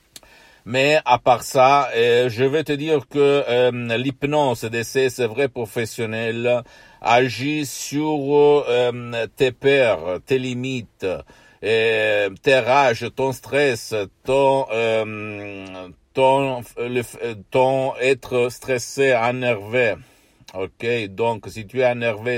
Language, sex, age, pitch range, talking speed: Italian, male, 60-79, 105-130 Hz, 95 wpm